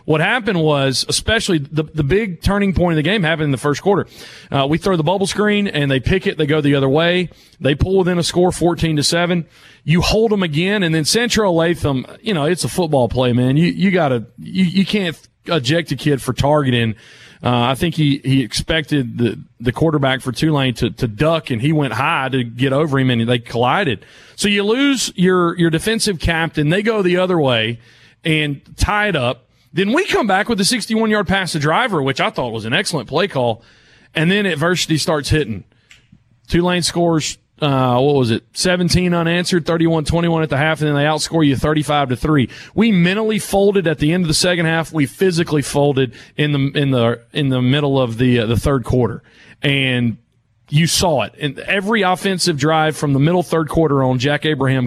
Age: 40-59